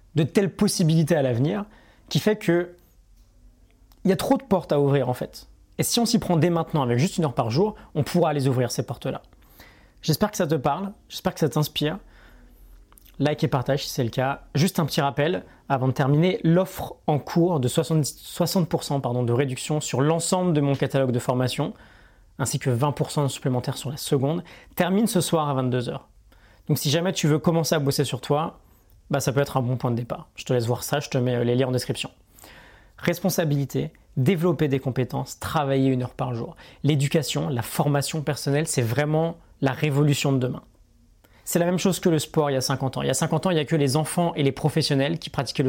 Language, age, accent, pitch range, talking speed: French, 30-49, French, 130-165 Hz, 220 wpm